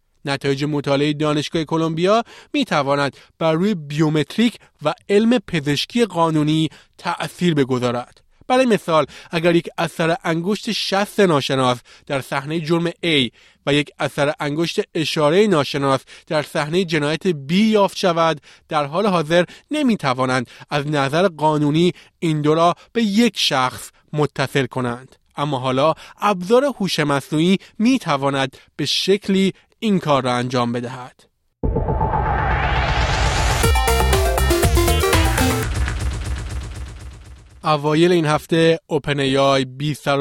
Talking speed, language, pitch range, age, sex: 110 wpm, Persian, 135-175 Hz, 30-49, male